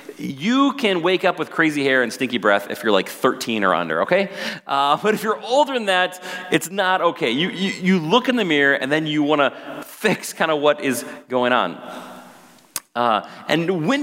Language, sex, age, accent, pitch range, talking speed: English, male, 30-49, American, 135-190 Hz, 210 wpm